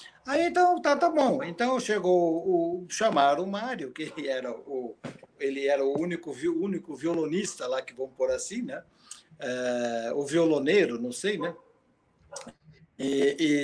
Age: 60-79